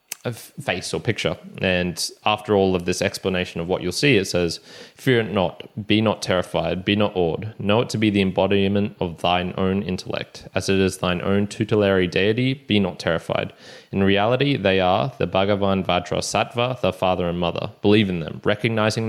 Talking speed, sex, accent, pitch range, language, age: 190 wpm, male, Australian, 90-105 Hz, English, 20-39